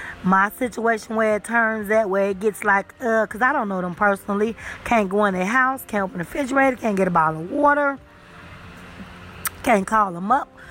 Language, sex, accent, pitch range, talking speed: English, female, American, 190-240 Hz, 200 wpm